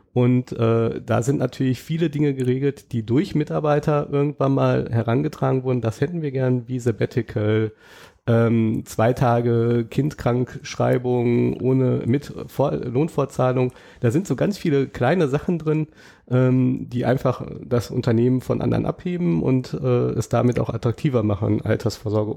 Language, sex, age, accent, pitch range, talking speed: German, male, 30-49, German, 115-135 Hz, 140 wpm